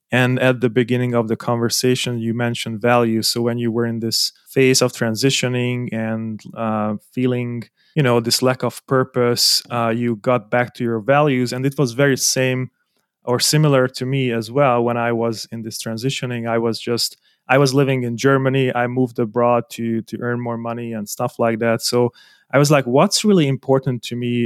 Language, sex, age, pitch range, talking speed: English, male, 30-49, 115-130 Hz, 200 wpm